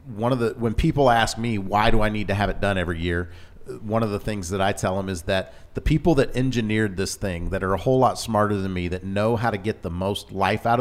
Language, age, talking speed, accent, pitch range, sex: English, 40-59, 280 wpm, American, 95-115 Hz, male